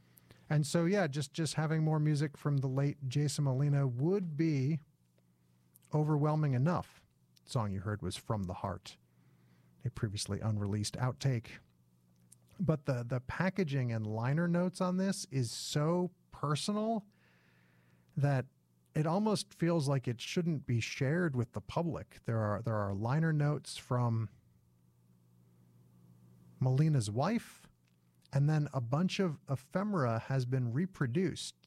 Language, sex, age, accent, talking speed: English, male, 40-59, American, 135 wpm